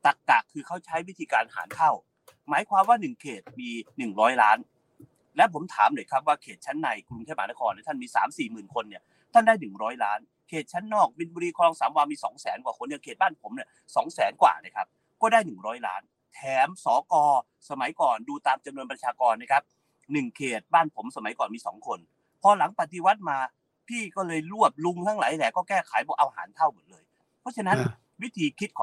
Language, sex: Thai, male